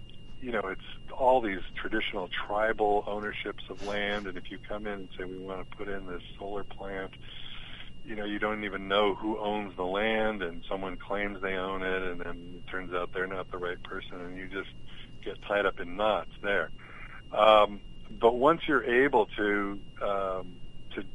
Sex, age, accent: male, 50-69, American